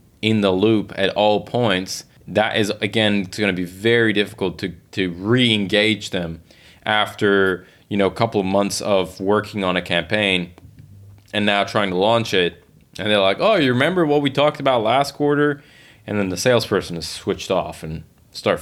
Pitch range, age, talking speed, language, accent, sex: 95-115 Hz, 20-39, 185 wpm, English, American, male